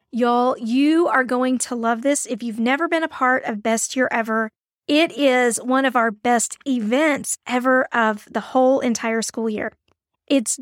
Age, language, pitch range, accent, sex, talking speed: 40-59, English, 240-295 Hz, American, female, 180 wpm